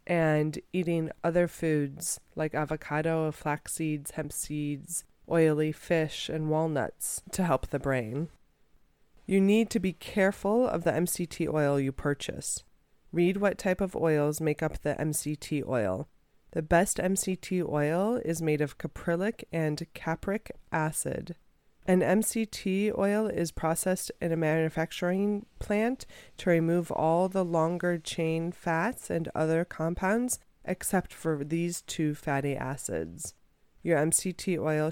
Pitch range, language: 155-190 Hz, English